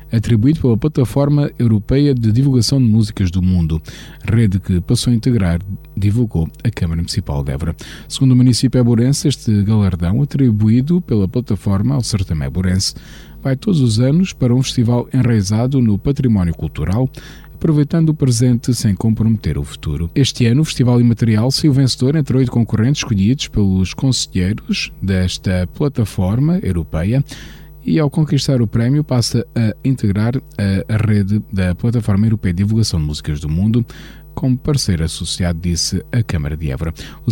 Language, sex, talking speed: Portuguese, male, 155 wpm